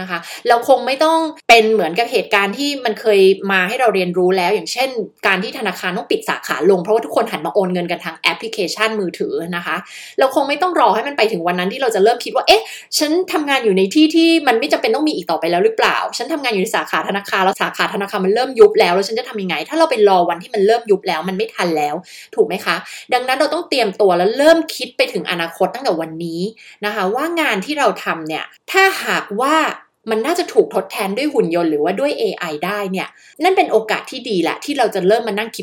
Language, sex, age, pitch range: Thai, female, 20-39, 185-285 Hz